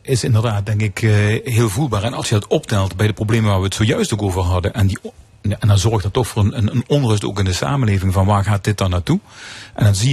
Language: Dutch